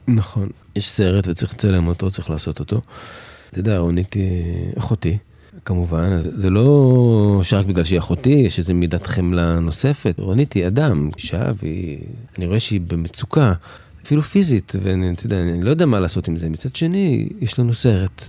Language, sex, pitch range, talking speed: Hebrew, male, 95-125 Hz, 170 wpm